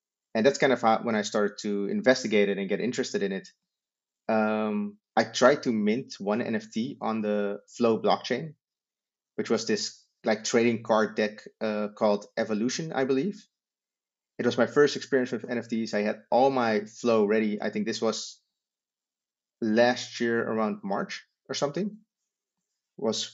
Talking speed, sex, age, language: 160 wpm, male, 30-49, English